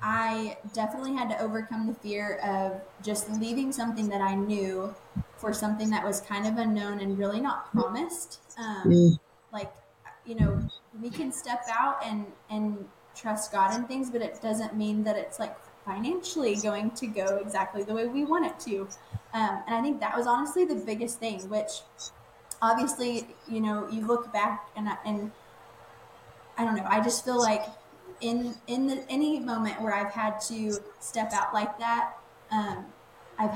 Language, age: English, 20-39